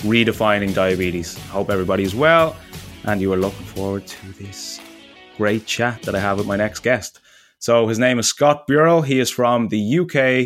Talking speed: 190 wpm